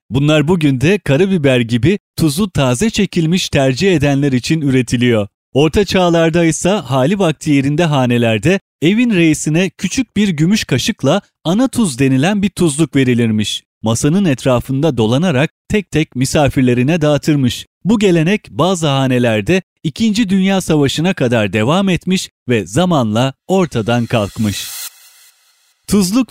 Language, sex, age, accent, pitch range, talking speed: Turkish, male, 30-49, native, 130-185 Hz, 120 wpm